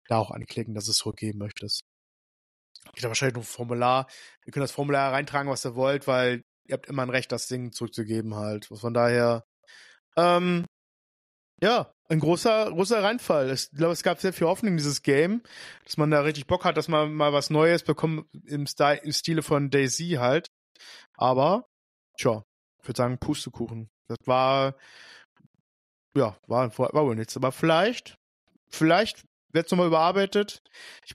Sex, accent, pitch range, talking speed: male, German, 125-165 Hz, 170 wpm